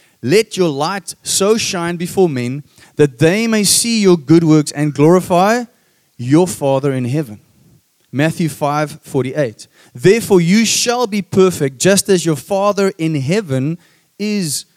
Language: English